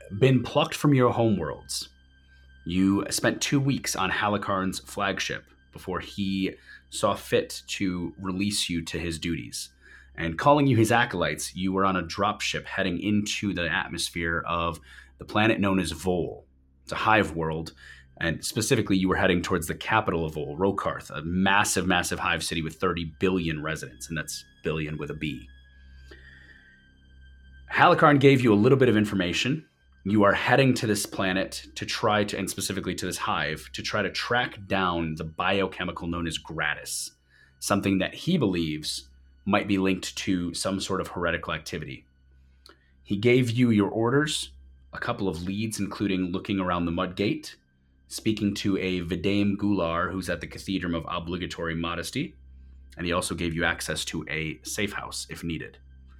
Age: 30-49